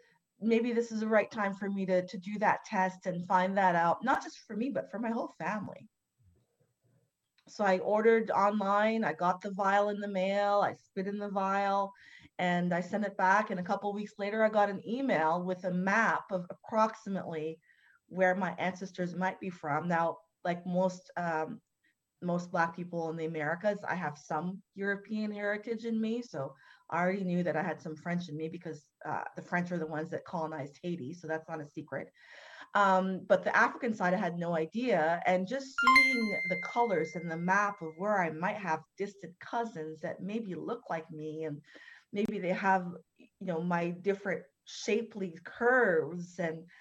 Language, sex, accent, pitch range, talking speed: English, female, American, 170-205 Hz, 190 wpm